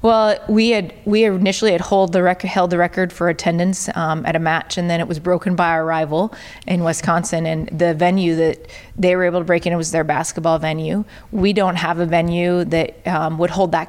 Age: 20-39